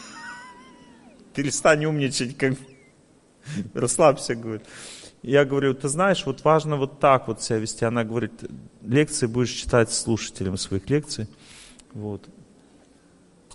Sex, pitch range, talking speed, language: male, 110-150 Hz, 110 wpm, Russian